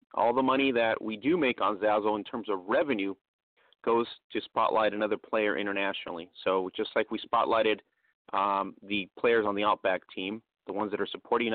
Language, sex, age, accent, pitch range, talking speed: English, male, 30-49, American, 100-115 Hz, 185 wpm